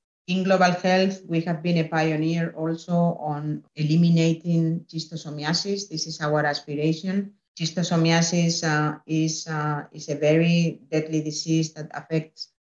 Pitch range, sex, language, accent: 150-175 Hz, female, German, Spanish